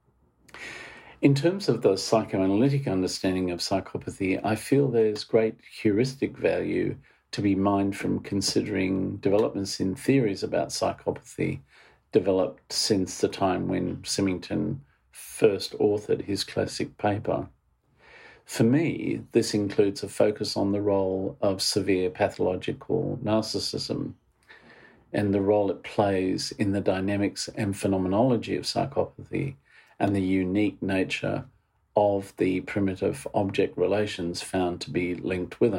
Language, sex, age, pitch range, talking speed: English, male, 50-69, 95-110 Hz, 125 wpm